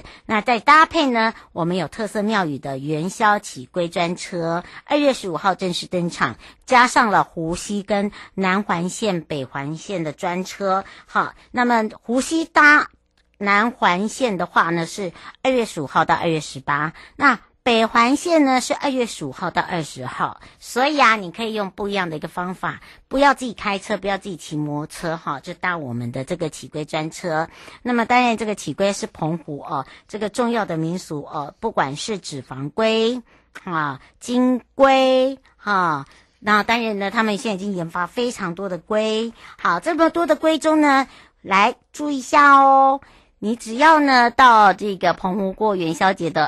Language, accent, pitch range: Chinese, American, 170-240 Hz